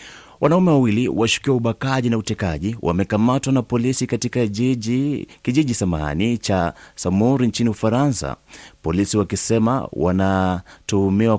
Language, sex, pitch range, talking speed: Swahili, male, 90-120 Hz, 105 wpm